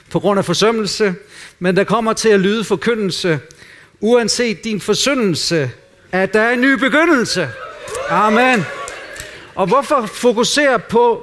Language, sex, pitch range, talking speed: Danish, male, 150-205 Hz, 135 wpm